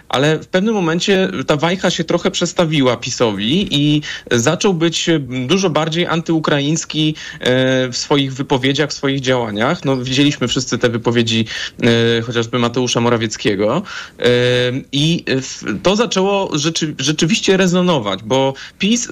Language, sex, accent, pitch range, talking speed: Polish, male, native, 135-170 Hz, 120 wpm